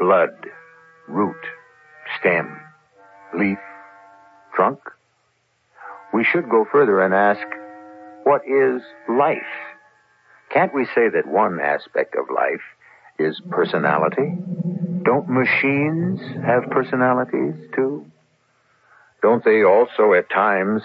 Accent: American